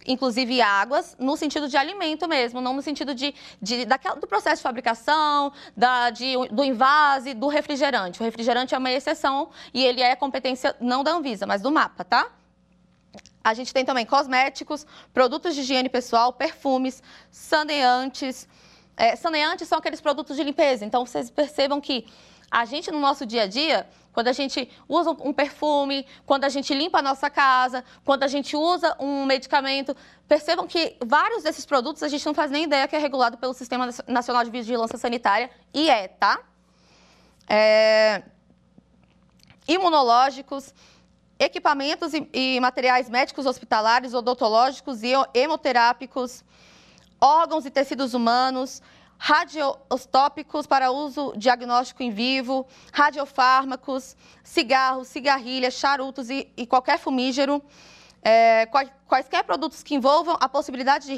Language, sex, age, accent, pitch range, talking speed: Portuguese, female, 20-39, Brazilian, 250-295 Hz, 135 wpm